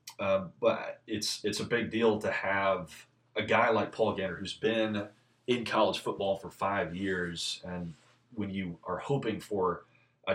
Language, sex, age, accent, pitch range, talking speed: English, male, 30-49, American, 95-115 Hz, 170 wpm